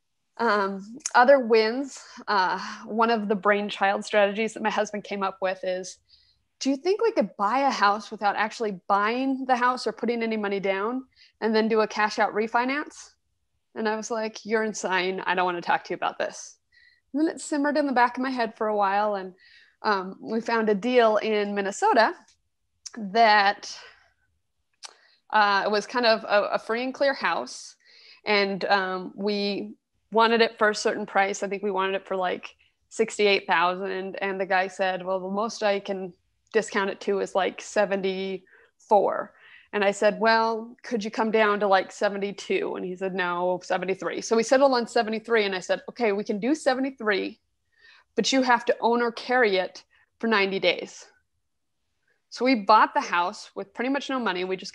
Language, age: English, 20-39